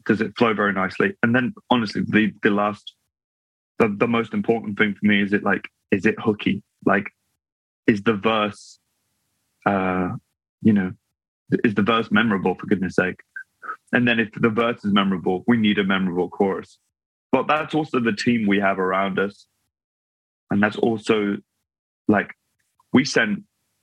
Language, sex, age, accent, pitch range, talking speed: English, male, 20-39, British, 100-120 Hz, 165 wpm